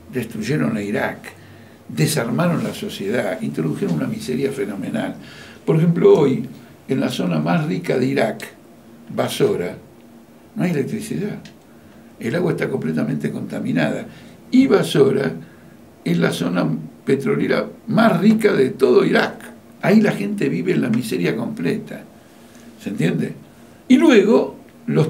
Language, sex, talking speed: Spanish, male, 125 wpm